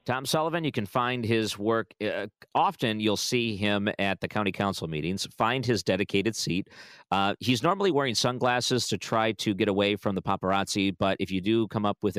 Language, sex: English, male